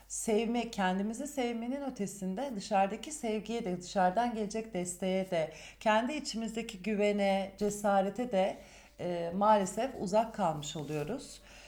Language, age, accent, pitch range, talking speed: Turkish, 40-59, native, 185-230 Hz, 110 wpm